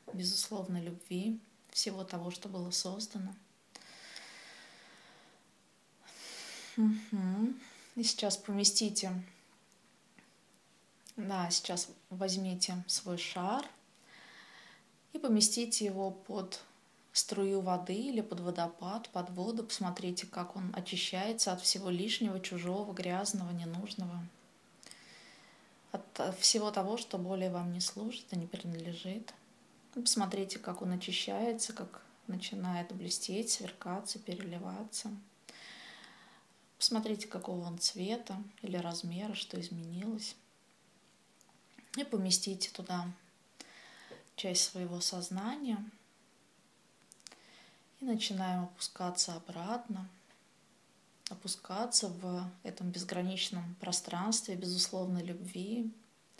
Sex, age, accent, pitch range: female, 20-39, native, 180-215 Hz